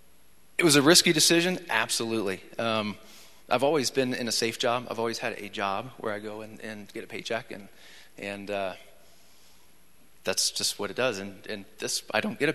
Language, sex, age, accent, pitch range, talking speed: English, male, 30-49, American, 110-125 Hz, 200 wpm